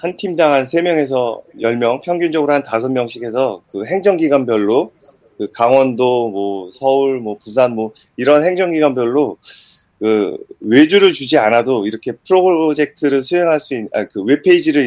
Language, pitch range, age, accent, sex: Korean, 120-165 Hz, 30-49, native, male